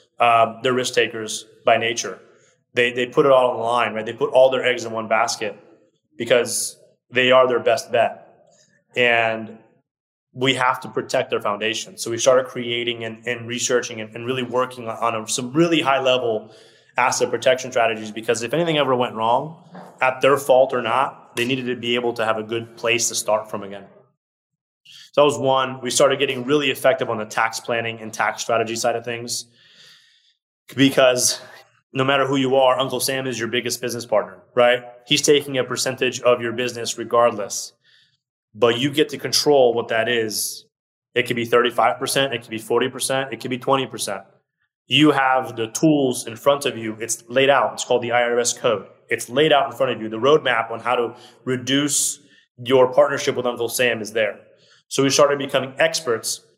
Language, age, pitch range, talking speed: English, 20-39, 115-135 Hz, 195 wpm